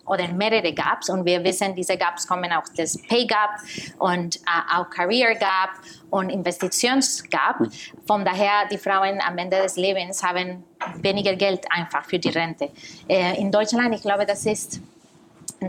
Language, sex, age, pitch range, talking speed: German, female, 20-39, 185-215 Hz, 170 wpm